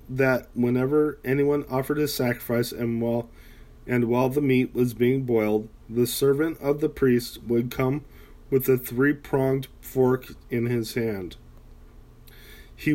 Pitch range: 110-135 Hz